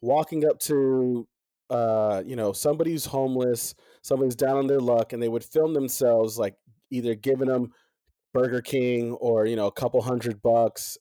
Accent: American